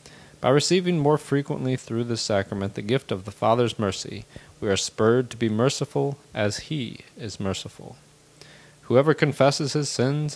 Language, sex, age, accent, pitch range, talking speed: English, male, 30-49, American, 110-145 Hz, 155 wpm